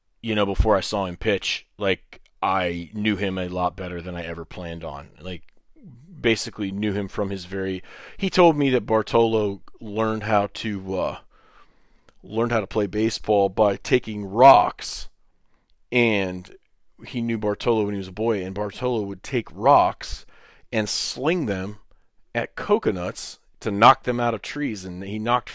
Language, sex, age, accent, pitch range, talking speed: English, male, 30-49, American, 95-115 Hz, 165 wpm